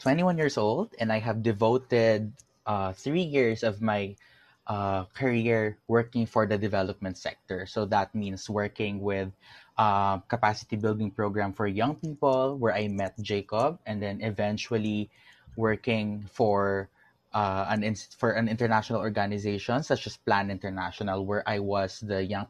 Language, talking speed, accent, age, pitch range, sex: English, 140 wpm, Filipino, 20-39, 100-115 Hz, male